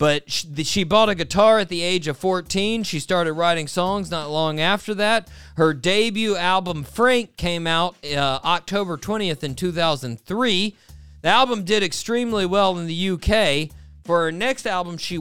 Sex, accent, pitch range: male, American, 145-205 Hz